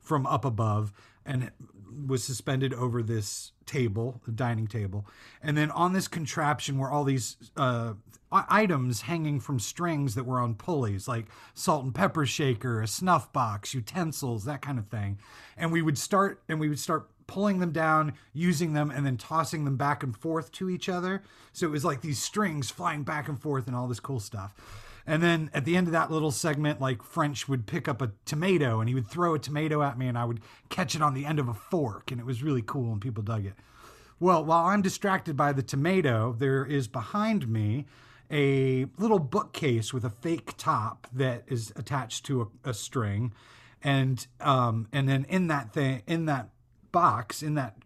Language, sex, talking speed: English, male, 200 wpm